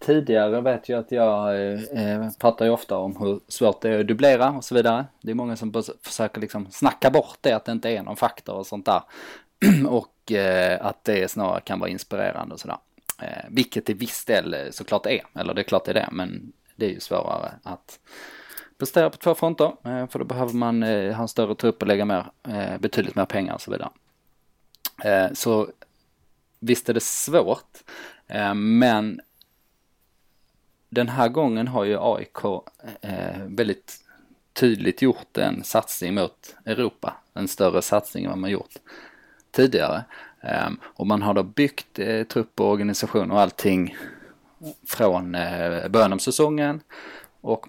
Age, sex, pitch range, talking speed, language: 20-39, male, 100-120 Hz, 170 wpm, Swedish